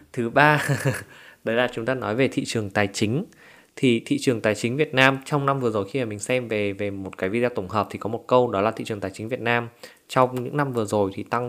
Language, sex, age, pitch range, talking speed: Vietnamese, male, 20-39, 105-135 Hz, 275 wpm